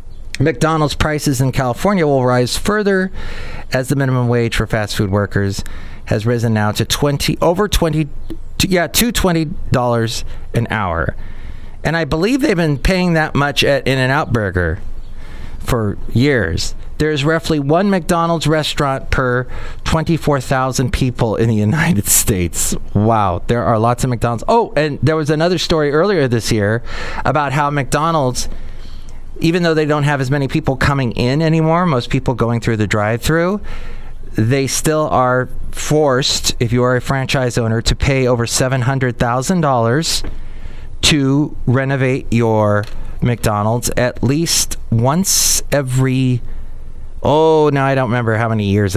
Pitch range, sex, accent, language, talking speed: 110-150 Hz, male, American, English, 150 wpm